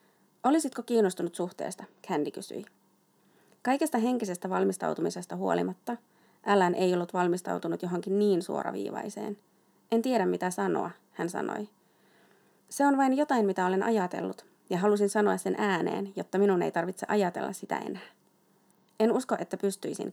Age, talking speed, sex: 30-49, 135 wpm, female